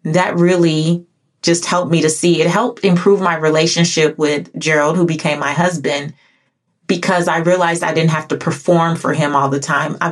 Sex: female